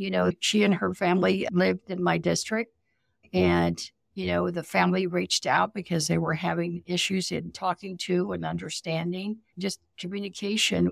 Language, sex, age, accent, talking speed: English, female, 60-79, American, 160 wpm